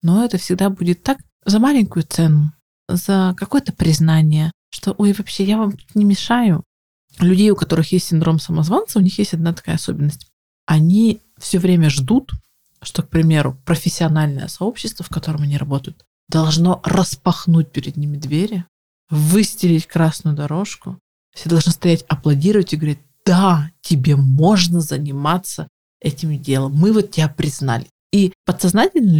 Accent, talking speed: native, 140 wpm